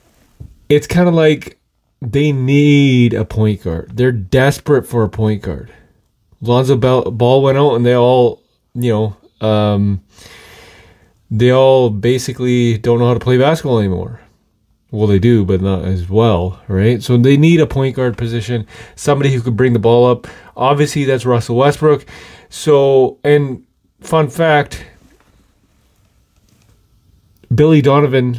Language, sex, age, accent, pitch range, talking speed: English, male, 20-39, American, 110-135 Hz, 140 wpm